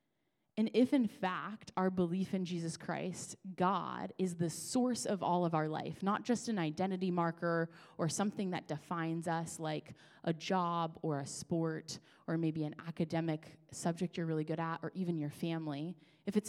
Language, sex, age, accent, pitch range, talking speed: English, female, 20-39, American, 160-195 Hz, 180 wpm